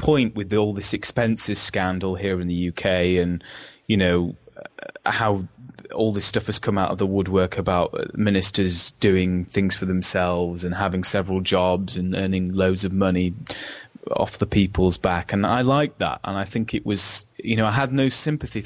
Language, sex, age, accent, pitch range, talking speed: English, male, 20-39, British, 95-110 Hz, 185 wpm